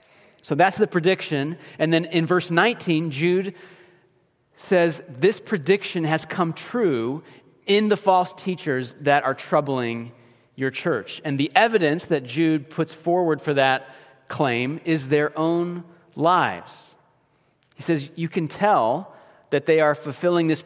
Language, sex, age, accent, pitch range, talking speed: English, male, 40-59, American, 140-175 Hz, 140 wpm